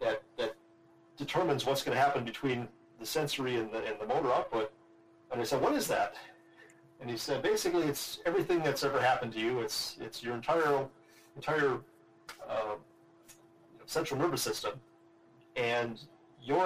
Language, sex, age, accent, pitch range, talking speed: English, male, 40-59, American, 115-145 Hz, 165 wpm